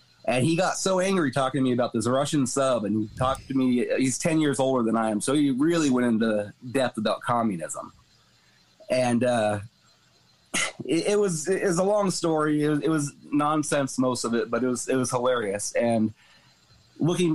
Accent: American